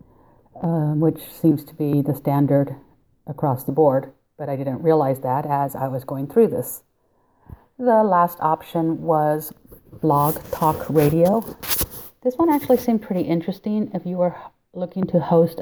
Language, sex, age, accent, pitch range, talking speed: English, female, 50-69, American, 145-170 Hz, 155 wpm